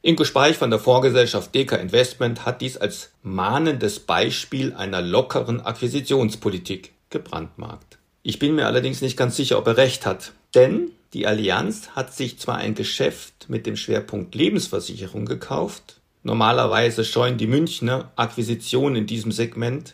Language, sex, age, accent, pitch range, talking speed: German, male, 50-69, German, 110-140 Hz, 145 wpm